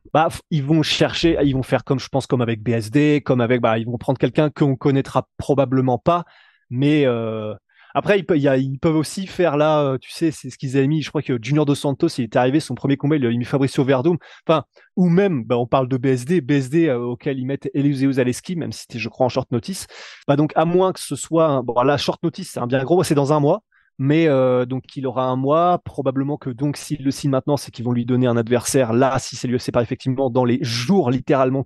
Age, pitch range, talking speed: 20-39, 125-155 Hz, 260 wpm